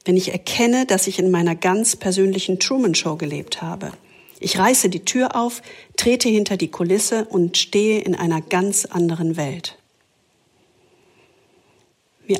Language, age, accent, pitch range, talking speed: English, 50-69, German, 180-220 Hz, 140 wpm